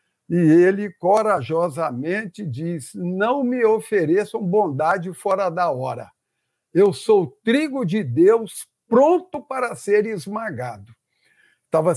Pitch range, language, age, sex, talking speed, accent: 145-210 Hz, Portuguese, 60-79, male, 105 wpm, Brazilian